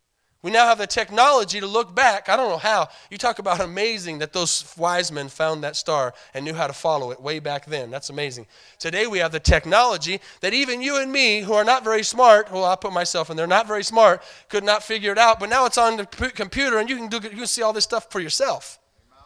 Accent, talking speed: American, 250 wpm